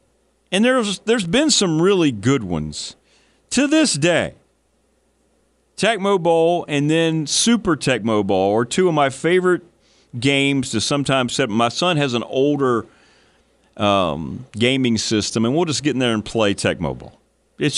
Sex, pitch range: male, 105-145 Hz